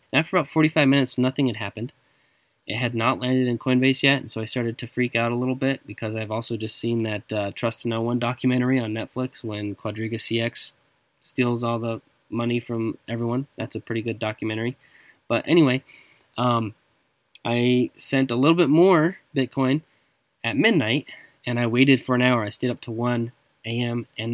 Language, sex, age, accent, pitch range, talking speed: English, male, 10-29, American, 115-140 Hz, 185 wpm